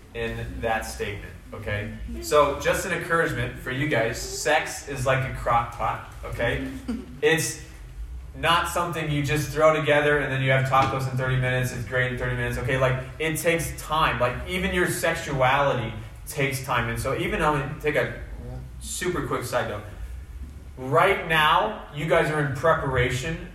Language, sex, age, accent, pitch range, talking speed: English, male, 20-39, American, 120-160 Hz, 170 wpm